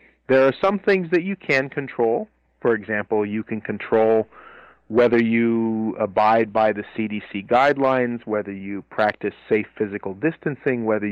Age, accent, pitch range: 40-59, American, 110-150 Hz